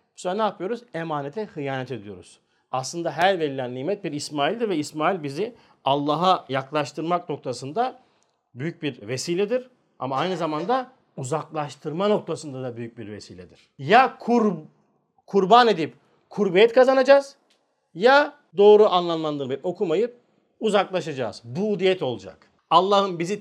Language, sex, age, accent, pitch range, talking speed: Turkish, male, 50-69, native, 150-215 Hz, 120 wpm